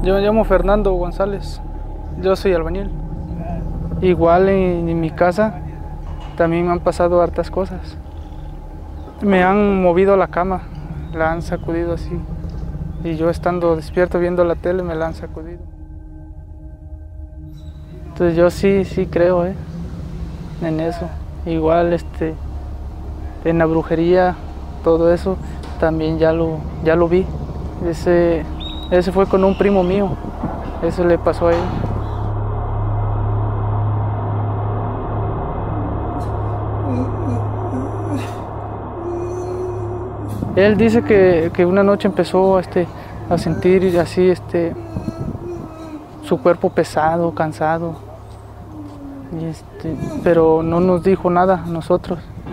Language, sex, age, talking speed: Spanish, male, 20-39, 110 wpm